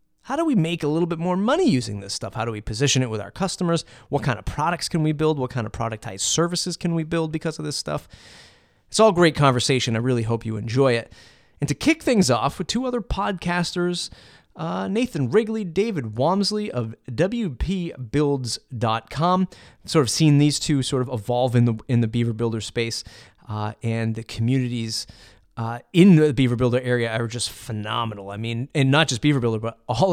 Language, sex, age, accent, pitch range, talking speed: English, male, 30-49, American, 115-165 Hz, 205 wpm